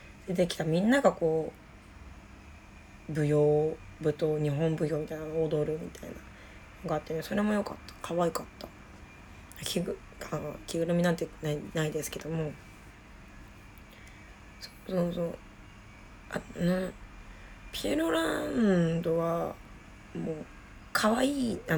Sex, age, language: female, 20-39, Japanese